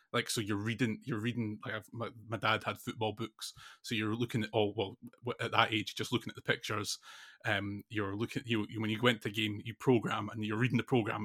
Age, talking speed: 20-39, 240 wpm